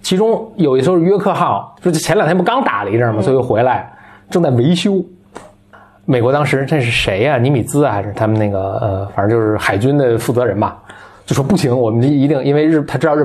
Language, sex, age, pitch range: Chinese, male, 20-39, 115-170 Hz